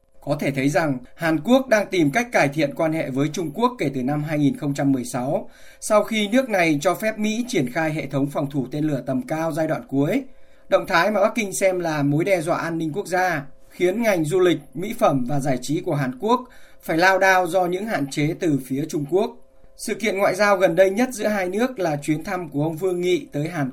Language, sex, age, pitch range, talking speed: Vietnamese, male, 20-39, 145-195 Hz, 245 wpm